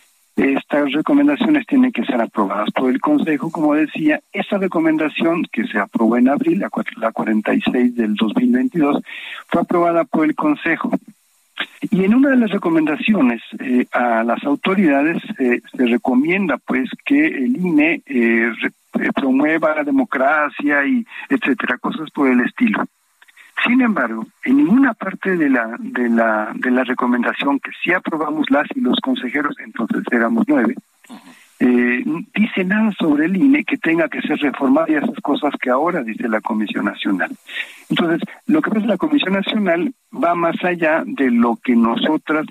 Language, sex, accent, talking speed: Spanish, male, Mexican, 155 wpm